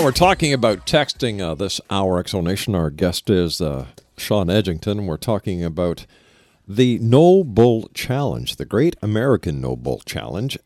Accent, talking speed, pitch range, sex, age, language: American, 145 wpm, 90-120 Hz, male, 50-69, English